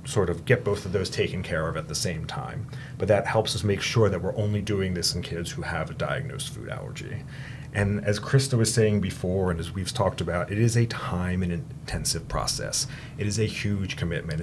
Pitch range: 95-130 Hz